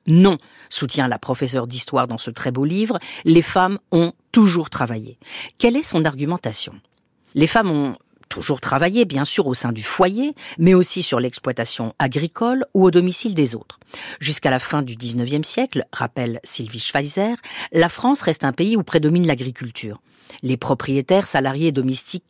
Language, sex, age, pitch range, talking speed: French, female, 50-69, 135-185 Hz, 165 wpm